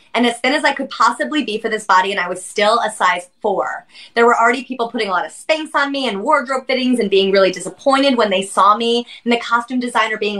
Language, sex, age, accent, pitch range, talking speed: English, female, 20-39, American, 200-255 Hz, 260 wpm